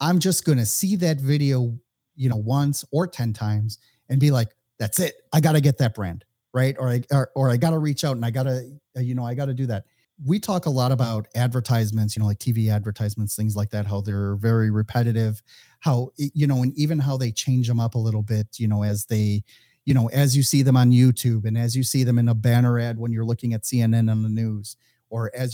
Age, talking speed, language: 30-49, 250 wpm, English